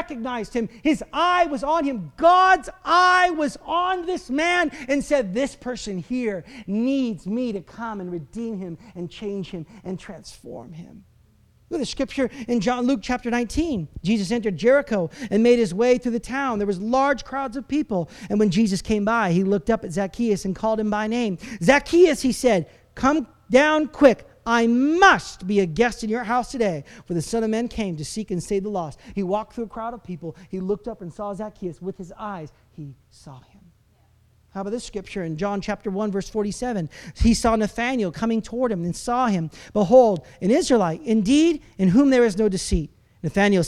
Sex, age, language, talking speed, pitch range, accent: male, 40-59, English, 200 wpm, 175-245 Hz, American